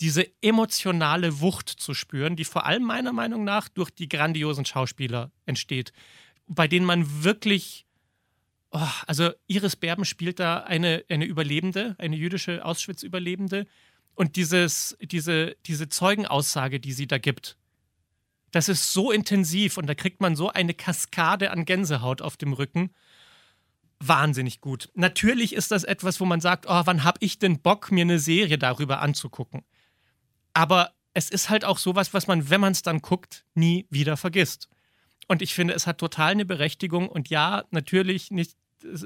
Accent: German